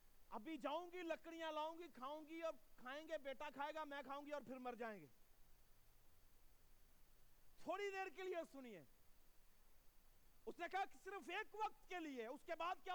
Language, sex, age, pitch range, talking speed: Urdu, male, 50-69, 290-360 Hz, 110 wpm